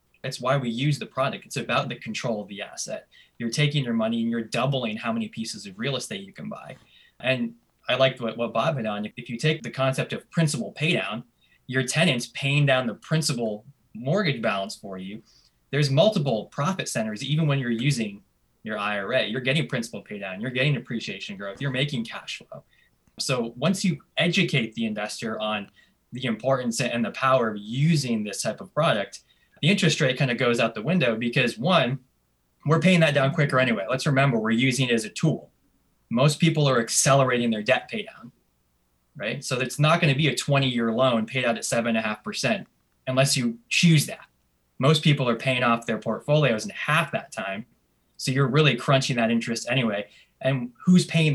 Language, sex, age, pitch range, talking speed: English, male, 10-29, 115-150 Hz, 195 wpm